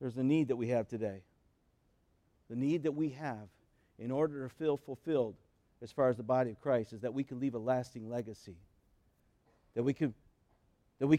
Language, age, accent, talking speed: English, 50-69, American, 205 wpm